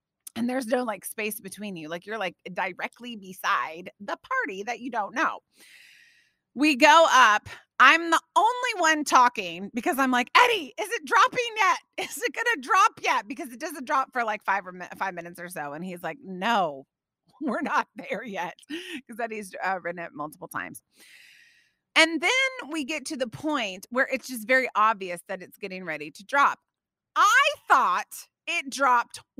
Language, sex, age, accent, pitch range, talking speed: English, female, 30-49, American, 210-325 Hz, 180 wpm